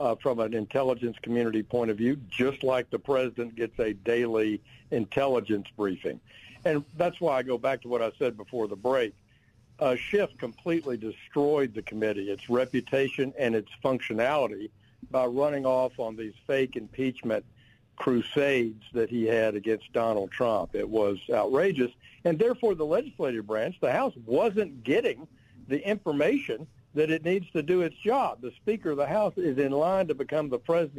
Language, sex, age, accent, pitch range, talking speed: English, male, 60-79, American, 115-145 Hz, 170 wpm